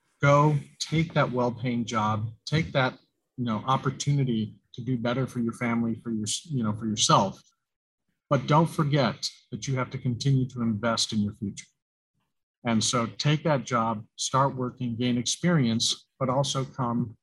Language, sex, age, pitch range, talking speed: English, male, 40-59, 115-140 Hz, 165 wpm